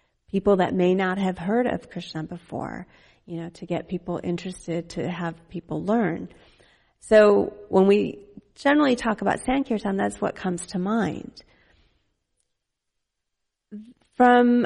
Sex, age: female, 30-49